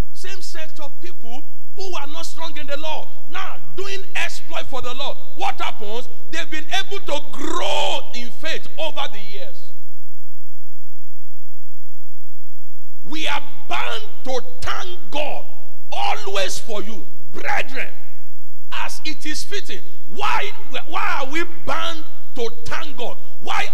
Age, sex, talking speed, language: 50-69, male, 130 wpm, English